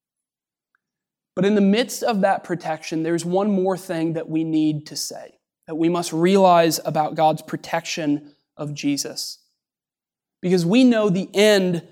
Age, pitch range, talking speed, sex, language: 20-39, 165-195 Hz, 150 wpm, male, English